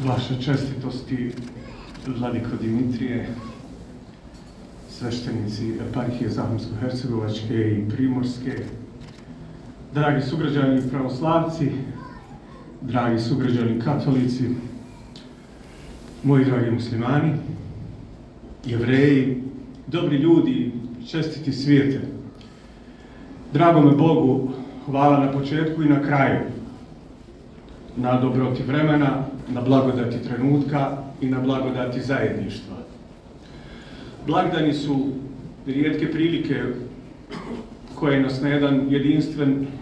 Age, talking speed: 50-69, 75 wpm